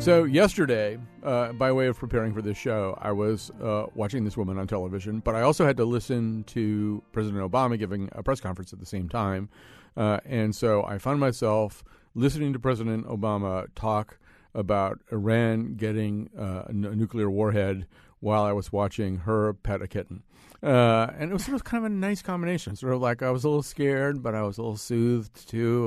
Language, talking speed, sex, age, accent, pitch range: English, 200 wpm, male, 50-69, American, 105-130 Hz